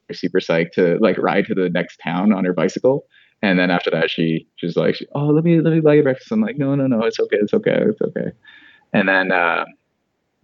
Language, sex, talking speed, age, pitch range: English, male, 240 wpm, 20-39, 90-130 Hz